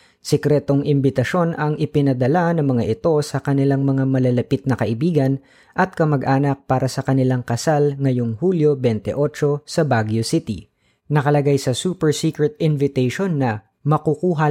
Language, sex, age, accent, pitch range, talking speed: Filipino, female, 20-39, native, 120-155 Hz, 130 wpm